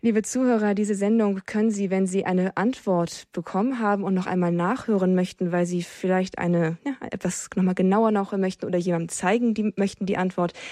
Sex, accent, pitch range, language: female, German, 175-210 Hz, German